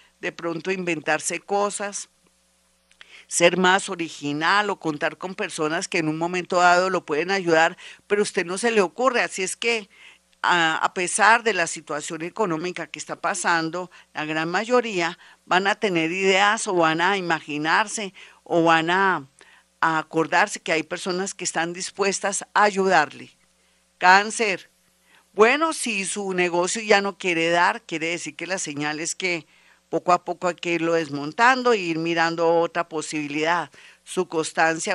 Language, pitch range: Spanish, 160-190 Hz